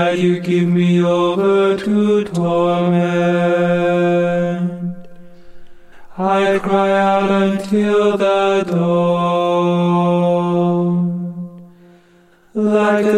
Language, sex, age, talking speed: English, male, 30-49, 60 wpm